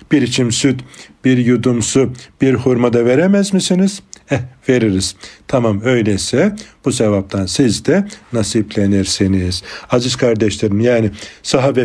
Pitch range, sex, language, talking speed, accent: 105-130 Hz, male, Turkish, 120 wpm, native